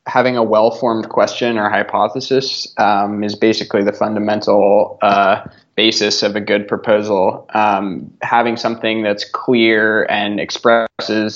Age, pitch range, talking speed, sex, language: 20-39, 105-115 Hz, 125 wpm, male, English